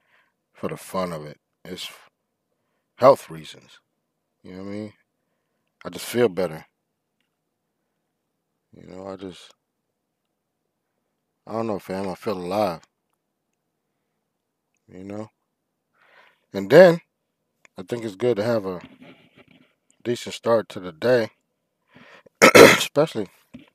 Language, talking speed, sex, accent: English, 115 wpm, male, American